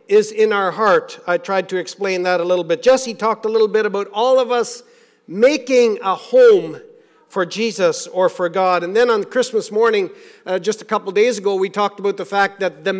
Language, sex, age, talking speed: English, male, 50-69, 215 wpm